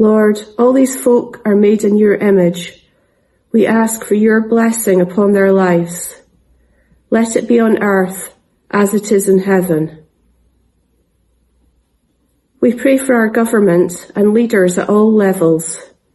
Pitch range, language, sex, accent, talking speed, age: 175-220 Hz, English, female, British, 140 wpm, 40-59